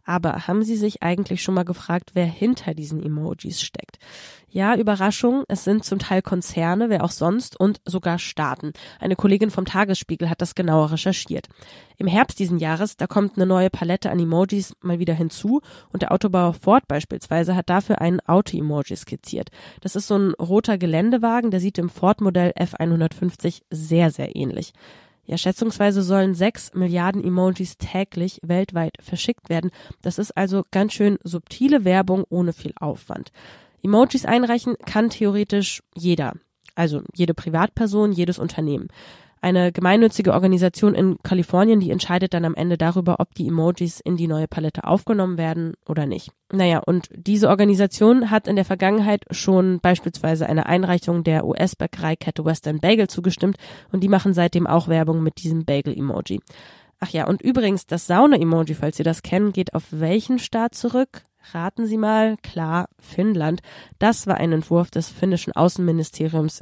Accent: German